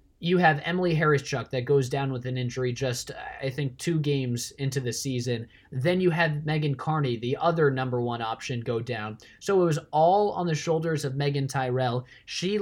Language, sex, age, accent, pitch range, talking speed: English, male, 20-39, American, 135-170 Hz, 195 wpm